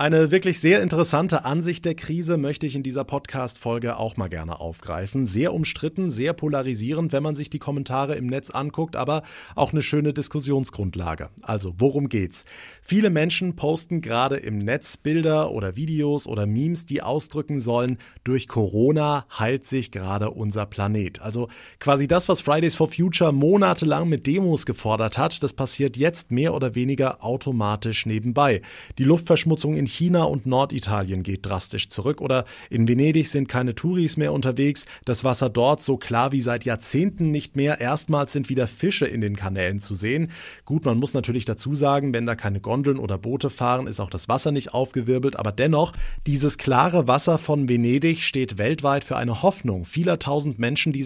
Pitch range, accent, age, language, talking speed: 120-155 Hz, German, 30-49, German, 175 wpm